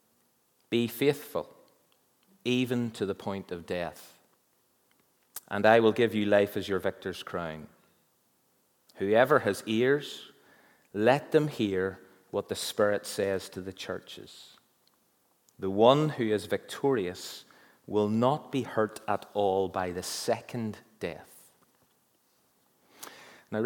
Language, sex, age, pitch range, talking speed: English, male, 30-49, 100-125 Hz, 120 wpm